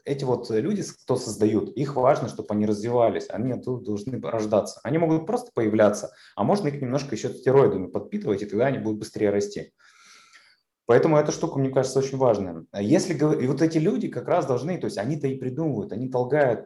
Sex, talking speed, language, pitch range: male, 190 wpm, Russian, 105-145 Hz